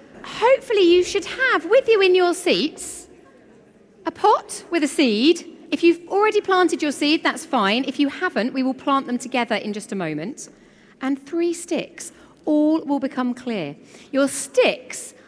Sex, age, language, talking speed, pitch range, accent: female, 40-59, English, 170 wpm, 240-335 Hz, British